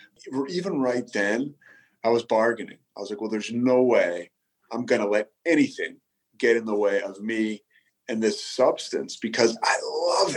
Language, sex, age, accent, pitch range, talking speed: English, male, 30-49, American, 110-135 Hz, 175 wpm